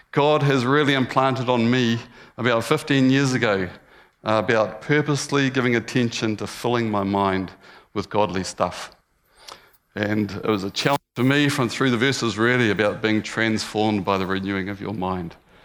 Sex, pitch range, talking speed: male, 105-125 Hz, 165 wpm